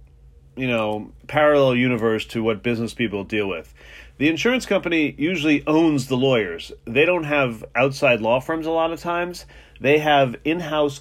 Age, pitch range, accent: 30-49, 110-140 Hz, American